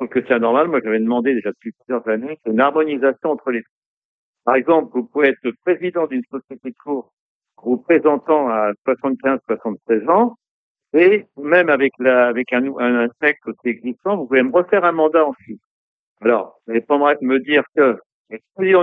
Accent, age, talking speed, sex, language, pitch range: French, 60-79, 180 wpm, male, French, 120-155 Hz